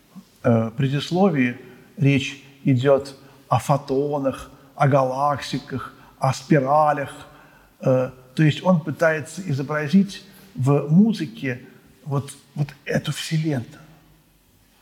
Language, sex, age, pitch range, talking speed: Russian, male, 50-69, 130-165 Hz, 80 wpm